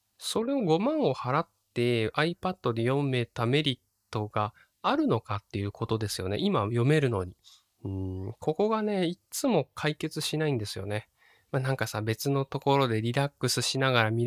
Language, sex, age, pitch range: Japanese, male, 20-39, 110-155 Hz